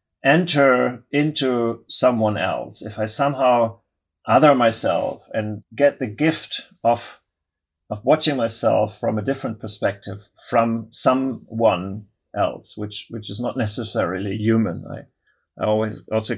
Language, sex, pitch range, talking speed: English, male, 100-130 Hz, 125 wpm